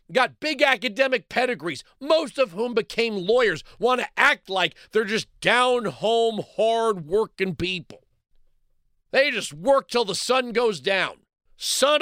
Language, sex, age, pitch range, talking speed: English, male, 50-69, 200-275 Hz, 145 wpm